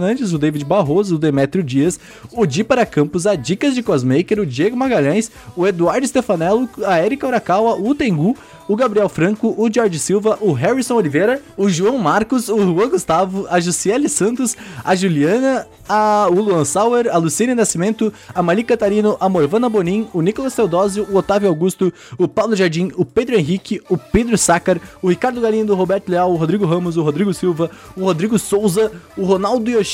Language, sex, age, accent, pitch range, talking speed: Portuguese, male, 20-39, Brazilian, 165-215 Hz, 180 wpm